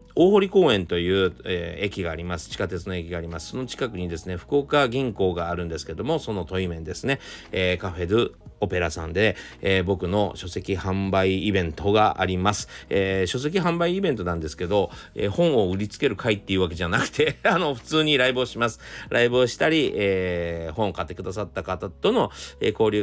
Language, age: Japanese, 40-59